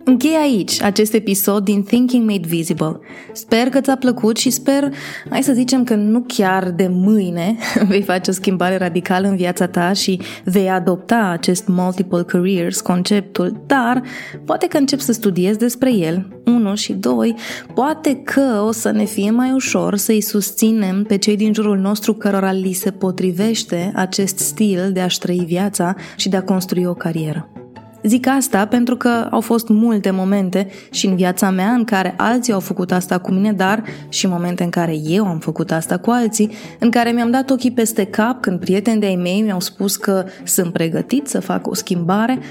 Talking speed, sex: 185 wpm, female